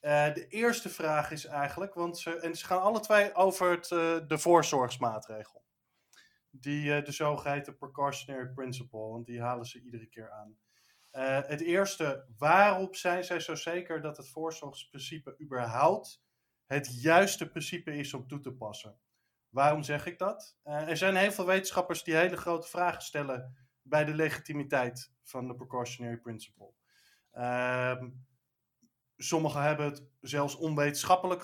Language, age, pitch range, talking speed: Dutch, 20-39, 135-170 Hz, 150 wpm